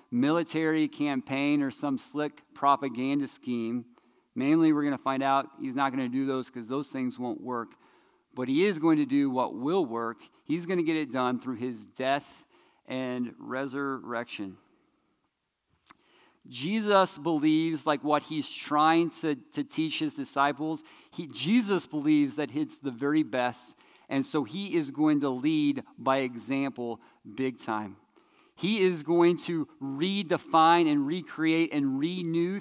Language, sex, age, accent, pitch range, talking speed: English, male, 40-59, American, 130-170 Hz, 155 wpm